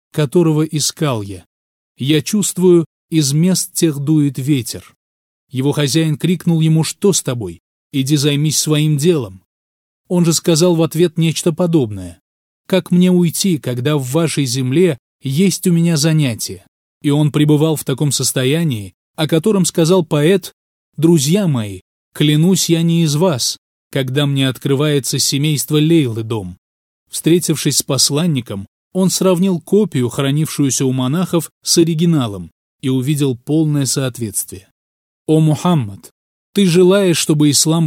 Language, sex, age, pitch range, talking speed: Russian, male, 30-49, 130-170 Hz, 130 wpm